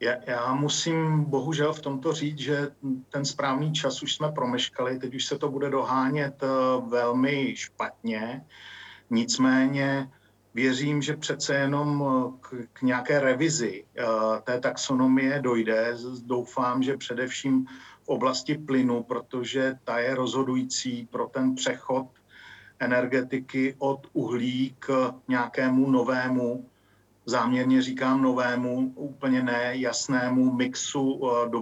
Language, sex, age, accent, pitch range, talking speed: Czech, male, 50-69, native, 125-140 Hz, 110 wpm